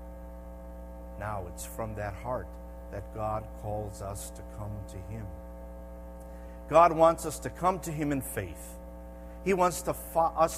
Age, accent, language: 50-69, American, English